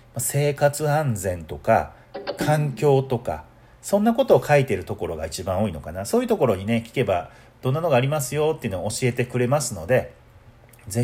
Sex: male